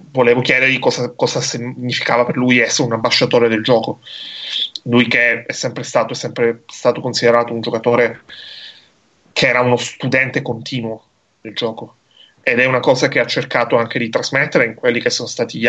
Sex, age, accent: male, 30-49, native